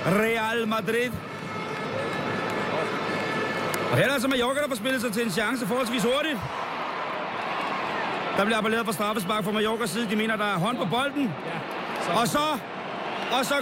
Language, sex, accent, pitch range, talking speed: Danish, male, native, 200-260 Hz, 155 wpm